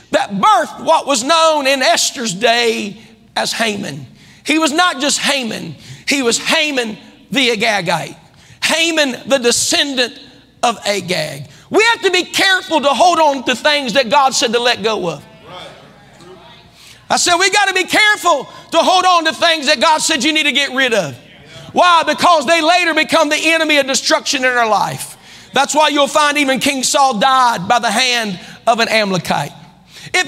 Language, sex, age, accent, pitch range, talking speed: English, male, 40-59, American, 235-330 Hz, 175 wpm